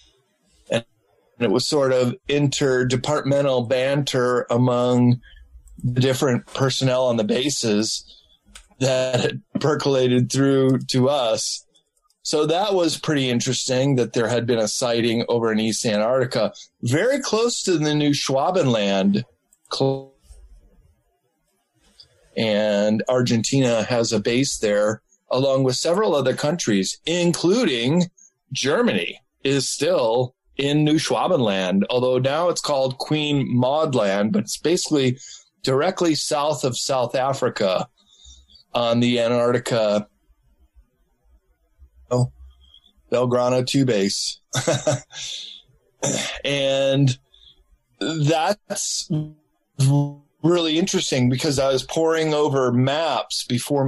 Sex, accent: male, American